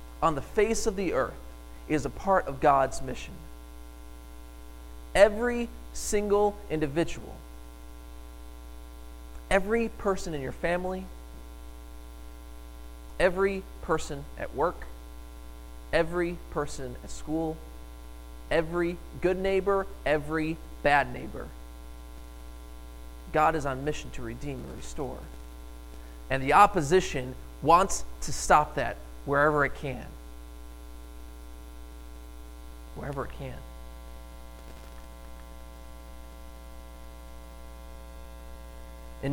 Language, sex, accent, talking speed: English, male, American, 85 wpm